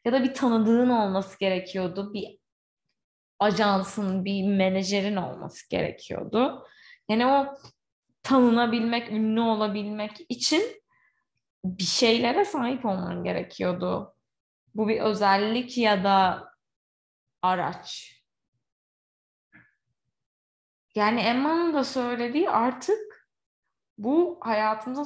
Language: Turkish